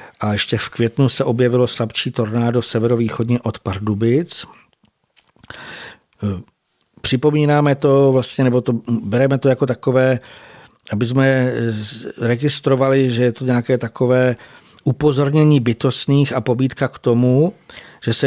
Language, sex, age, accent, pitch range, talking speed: Czech, male, 50-69, native, 110-125 Hz, 120 wpm